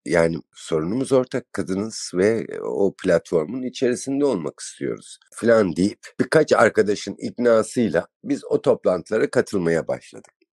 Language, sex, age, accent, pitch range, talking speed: Turkish, male, 60-79, native, 100-130 Hz, 115 wpm